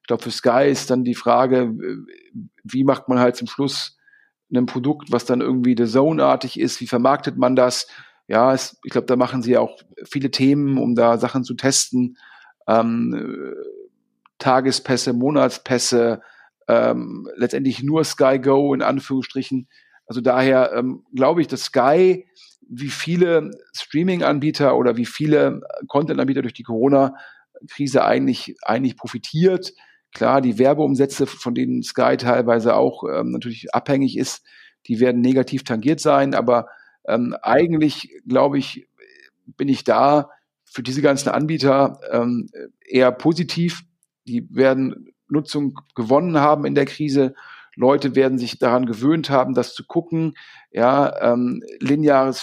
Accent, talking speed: German, 140 wpm